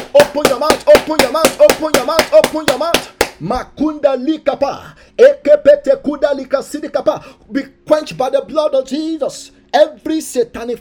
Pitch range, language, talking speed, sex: 250-310 Hz, English, 115 wpm, male